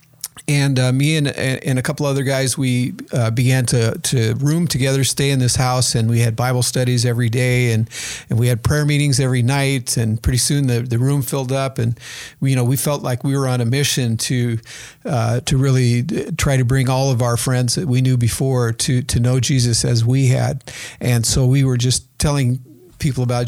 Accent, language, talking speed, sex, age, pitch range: American, English, 215 wpm, male, 50-69, 120-140 Hz